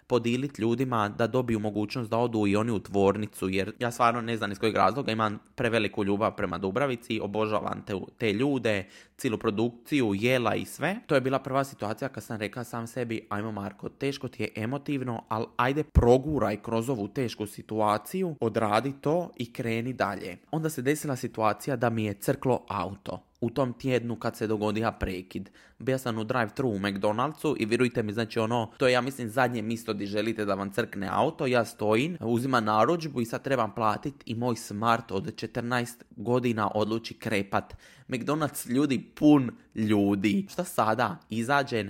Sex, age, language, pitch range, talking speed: male, 20-39, Croatian, 110-130 Hz, 175 wpm